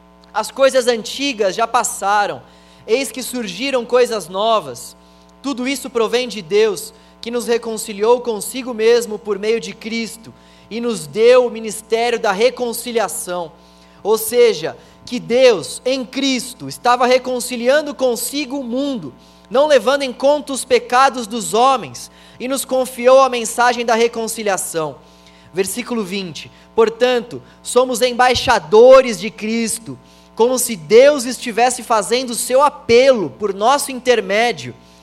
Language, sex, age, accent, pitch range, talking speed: Portuguese, male, 20-39, Brazilian, 185-250 Hz, 130 wpm